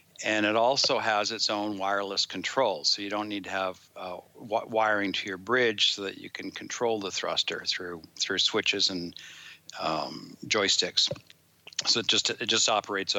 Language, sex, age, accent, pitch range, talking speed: English, male, 60-79, American, 100-110 Hz, 180 wpm